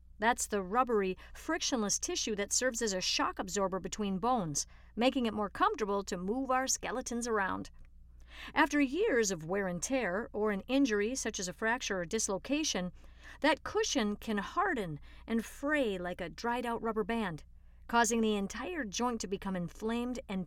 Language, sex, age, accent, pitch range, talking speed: English, female, 50-69, American, 190-255 Hz, 165 wpm